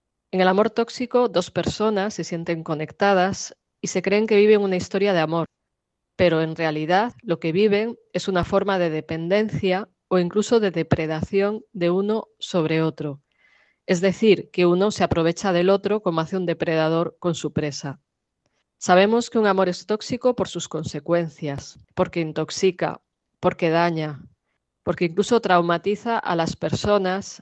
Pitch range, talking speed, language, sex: 165-200 Hz, 155 wpm, Spanish, female